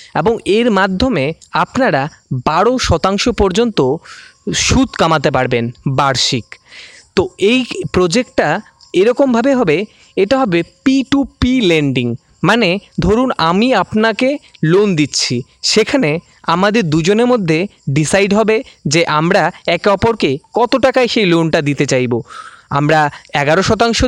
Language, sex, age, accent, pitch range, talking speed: Bengali, male, 20-39, native, 165-235 Hz, 115 wpm